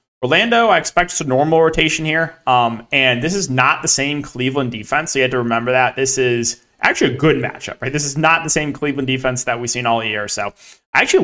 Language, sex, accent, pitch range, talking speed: English, male, American, 125-155 Hz, 240 wpm